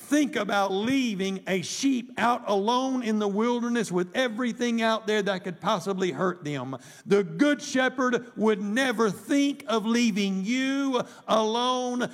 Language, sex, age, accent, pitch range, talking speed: English, male, 60-79, American, 195-240 Hz, 145 wpm